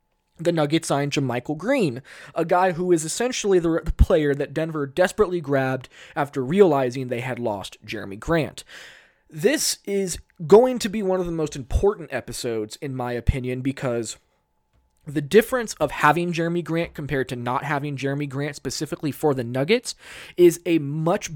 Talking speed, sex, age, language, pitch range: 165 wpm, male, 20-39, English, 135-175 Hz